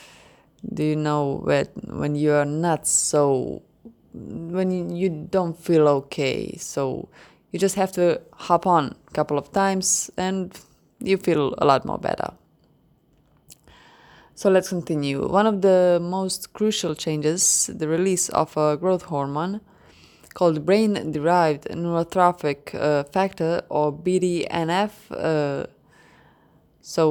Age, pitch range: 20-39, 150-185 Hz